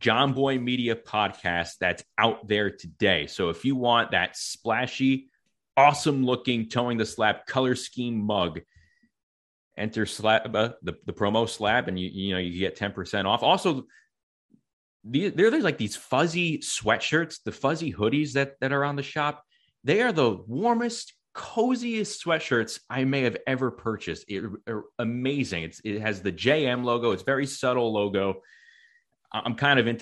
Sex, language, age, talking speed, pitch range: male, English, 30-49, 165 wpm, 95-135 Hz